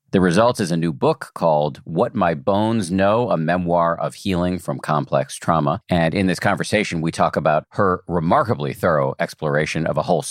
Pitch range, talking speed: 75-100 Hz, 185 wpm